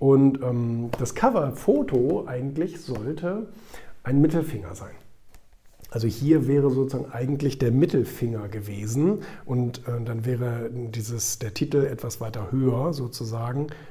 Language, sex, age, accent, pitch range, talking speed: German, male, 50-69, German, 115-150 Hz, 120 wpm